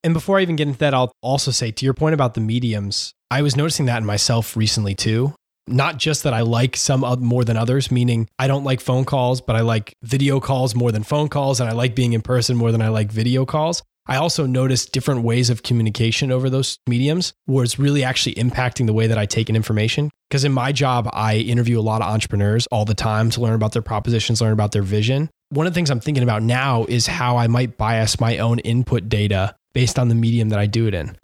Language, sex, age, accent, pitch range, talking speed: English, male, 20-39, American, 115-140 Hz, 250 wpm